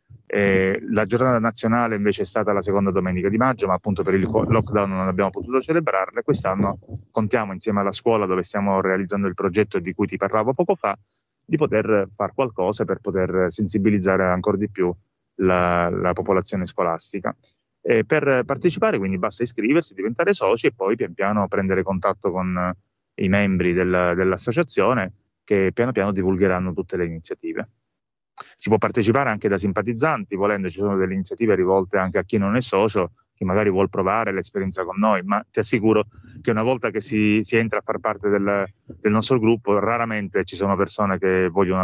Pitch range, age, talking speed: 95-110 Hz, 30-49, 180 wpm